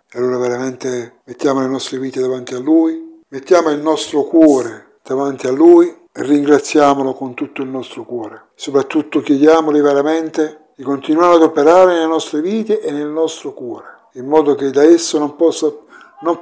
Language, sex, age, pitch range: Italian, male, 60-79, 140-175 Hz